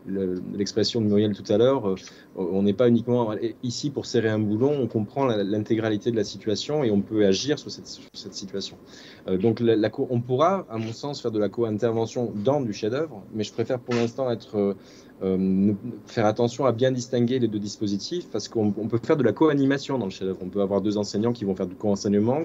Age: 20-39